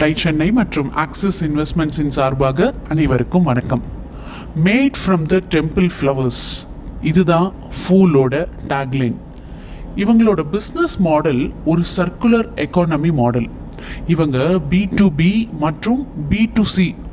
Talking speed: 95 wpm